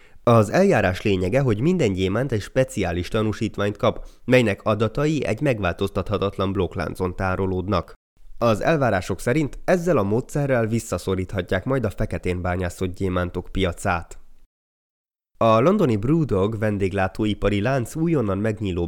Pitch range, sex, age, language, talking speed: 95-125 Hz, male, 20-39, Hungarian, 115 wpm